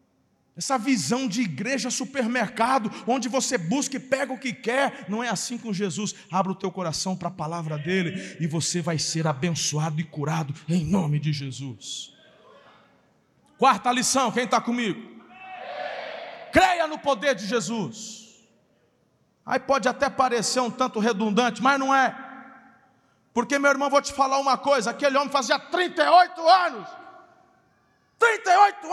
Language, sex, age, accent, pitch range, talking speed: Portuguese, male, 40-59, Brazilian, 200-270 Hz, 145 wpm